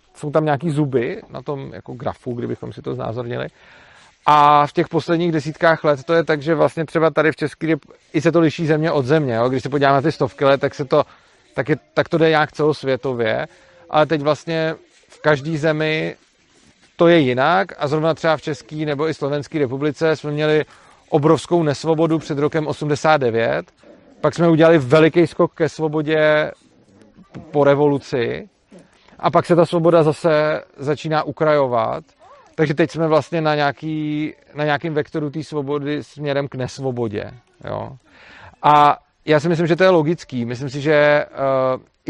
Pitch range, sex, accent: 145-160 Hz, male, native